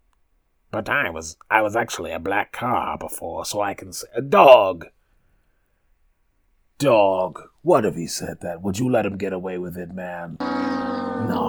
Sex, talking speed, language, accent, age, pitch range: male, 165 wpm, English, American, 30-49, 90-125 Hz